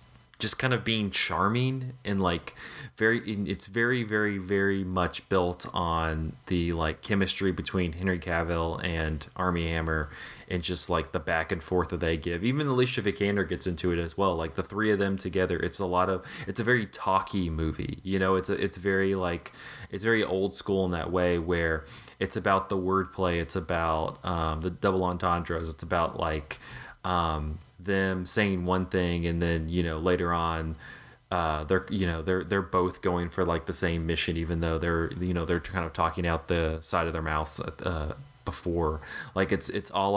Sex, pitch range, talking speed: male, 85-95 Hz, 195 wpm